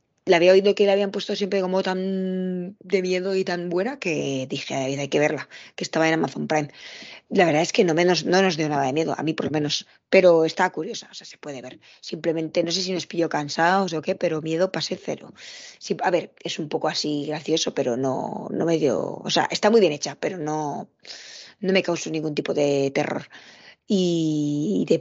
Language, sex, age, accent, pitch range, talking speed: Spanish, female, 20-39, Spanish, 155-185 Hz, 230 wpm